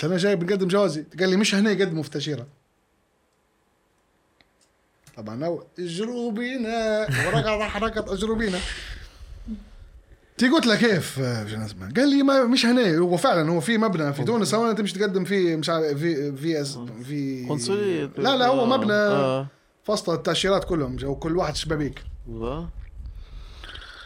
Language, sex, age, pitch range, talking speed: Arabic, male, 20-39, 155-235 Hz, 135 wpm